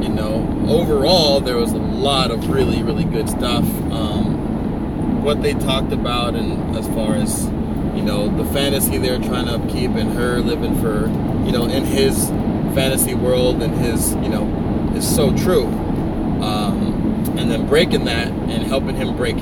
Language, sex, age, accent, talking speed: English, male, 20-39, American, 170 wpm